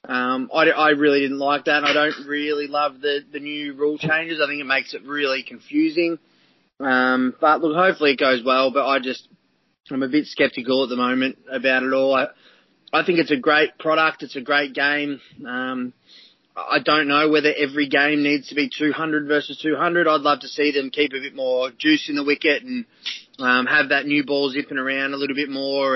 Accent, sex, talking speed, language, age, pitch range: Australian, male, 215 wpm, English, 20-39, 130-150 Hz